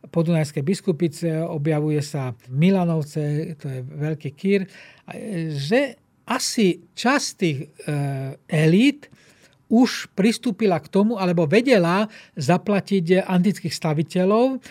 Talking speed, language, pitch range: 95 wpm, Slovak, 165-210 Hz